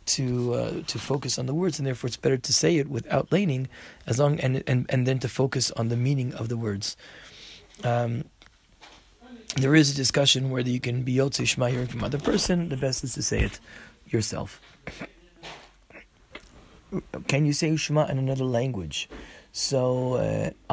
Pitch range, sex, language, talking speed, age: 125-155 Hz, male, English, 175 wpm, 30-49